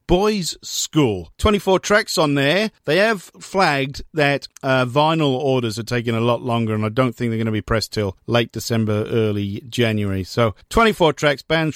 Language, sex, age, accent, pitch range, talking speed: English, male, 50-69, British, 125-170 Hz, 185 wpm